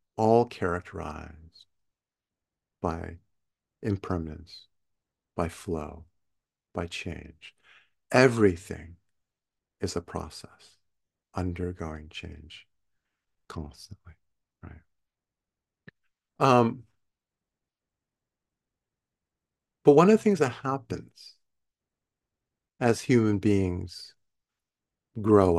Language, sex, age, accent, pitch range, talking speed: English, male, 50-69, American, 90-115 Hz, 65 wpm